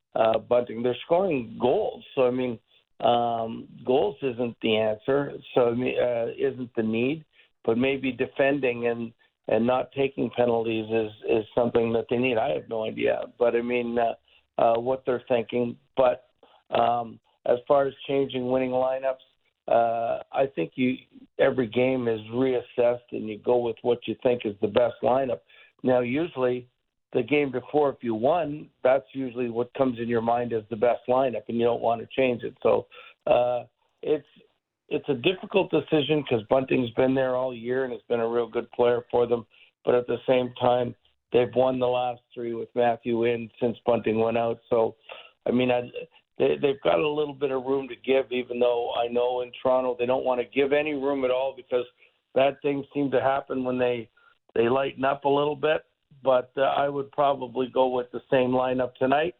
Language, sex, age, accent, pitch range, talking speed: English, male, 50-69, American, 120-135 Hz, 190 wpm